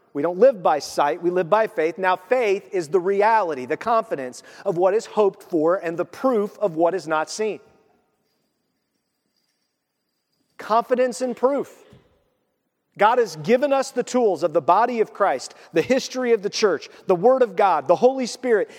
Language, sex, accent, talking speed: English, male, American, 175 wpm